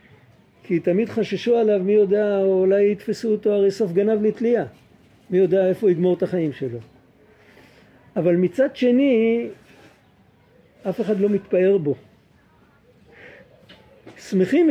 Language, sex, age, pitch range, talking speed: Hebrew, male, 50-69, 160-200 Hz, 120 wpm